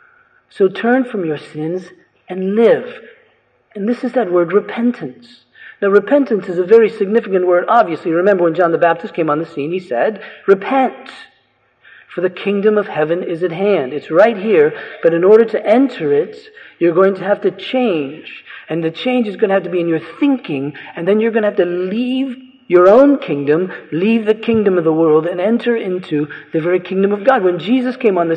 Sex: male